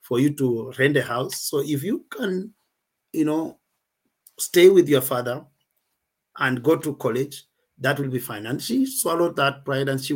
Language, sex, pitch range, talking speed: English, male, 130-160 Hz, 185 wpm